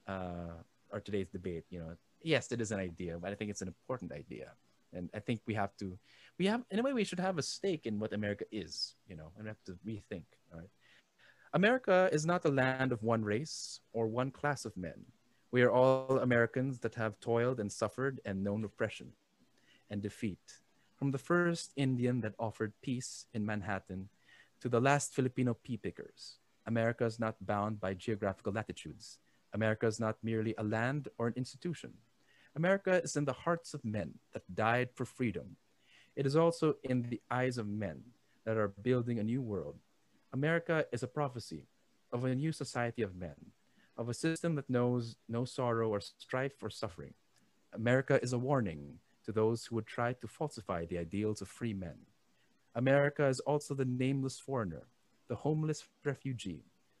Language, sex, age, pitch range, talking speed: English, male, 20-39, 105-135 Hz, 185 wpm